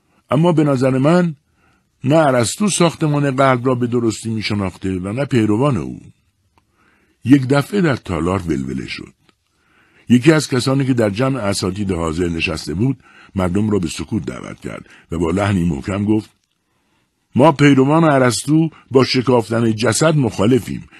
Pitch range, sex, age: 95-140 Hz, male, 60-79